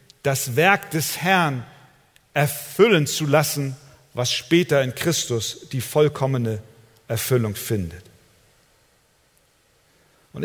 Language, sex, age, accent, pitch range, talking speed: German, male, 50-69, German, 110-145 Hz, 90 wpm